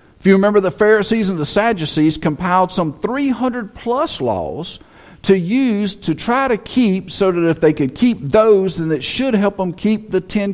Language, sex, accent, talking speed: English, male, American, 190 wpm